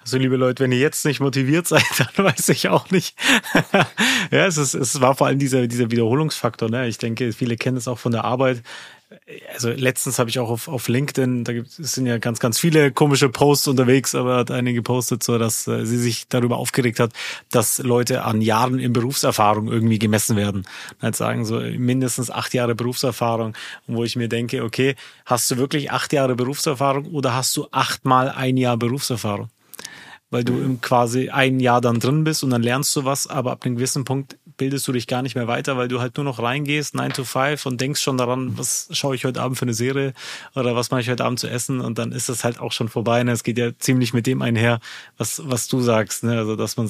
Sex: male